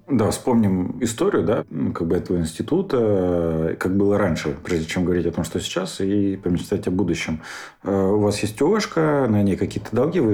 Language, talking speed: Russian, 180 wpm